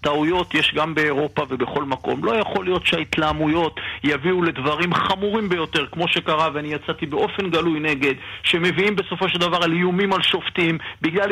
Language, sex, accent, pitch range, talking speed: Hebrew, male, native, 170-210 Hz, 160 wpm